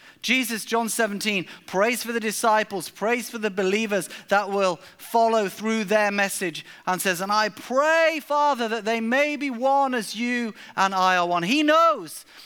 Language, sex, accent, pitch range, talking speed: English, male, British, 190-255 Hz, 175 wpm